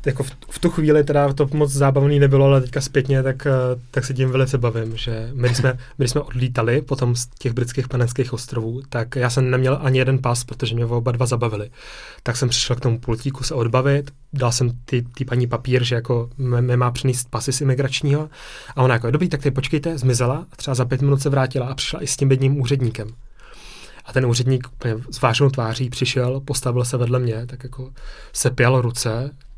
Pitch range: 120-135 Hz